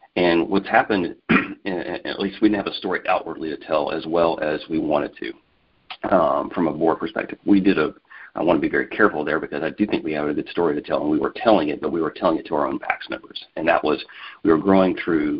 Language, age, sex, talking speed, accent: English, 40-59, male, 275 wpm, American